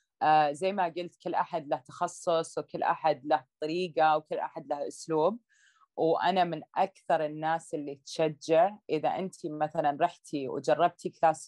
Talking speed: 140 wpm